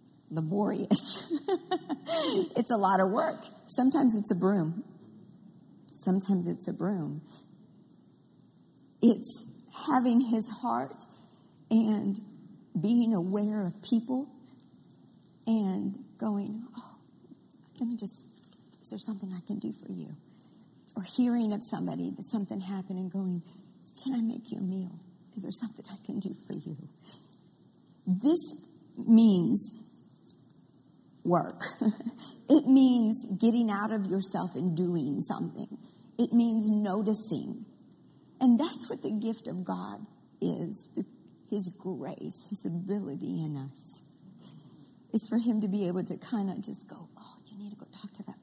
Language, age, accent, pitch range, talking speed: English, 50-69, American, 190-240 Hz, 135 wpm